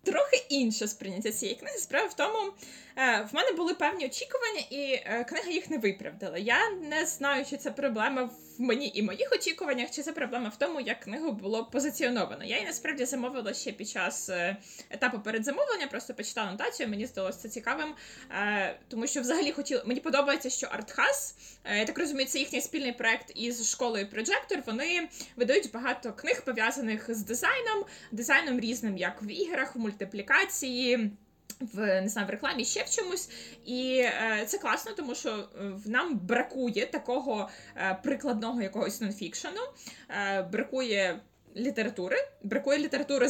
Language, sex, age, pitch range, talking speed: Ukrainian, female, 20-39, 215-280 Hz, 160 wpm